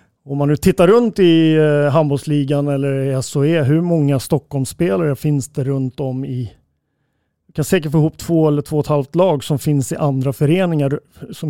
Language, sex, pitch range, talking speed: Swedish, male, 135-165 Hz, 190 wpm